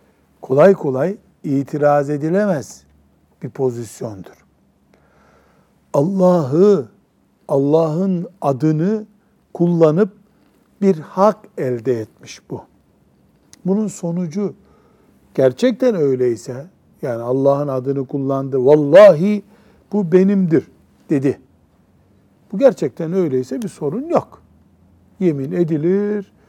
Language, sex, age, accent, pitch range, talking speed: Turkish, male, 60-79, native, 130-190 Hz, 80 wpm